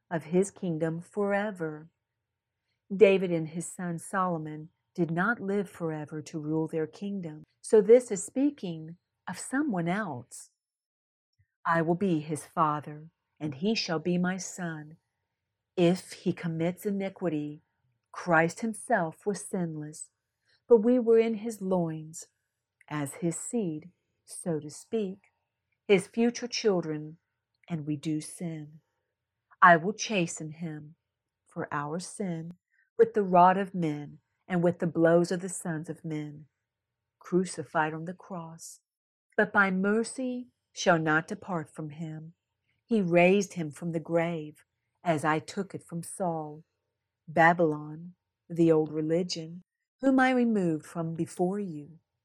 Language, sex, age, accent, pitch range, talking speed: English, female, 50-69, American, 155-195 Hz, 135 wpm